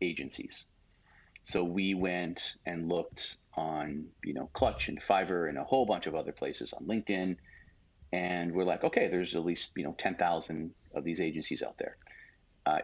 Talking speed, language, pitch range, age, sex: 180 wpm, English, 85-95 Hz, 40-59, male